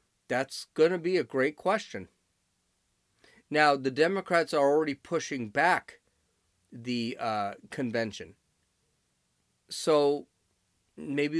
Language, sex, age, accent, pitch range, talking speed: English, male, 40-59, American, 115-170 Hz, 100 wpm